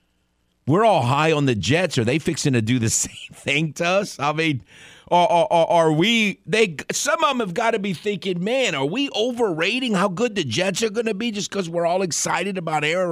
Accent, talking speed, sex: American, 235 wpm, male